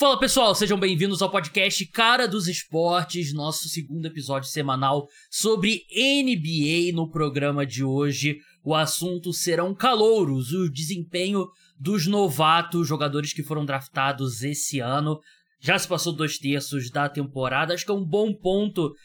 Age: 20-39